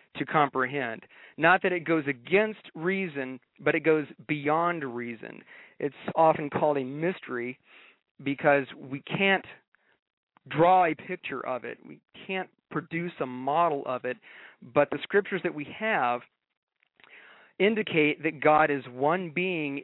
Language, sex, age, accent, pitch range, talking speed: English, male, 40-59, American, 140-180 Hz, 135 wpm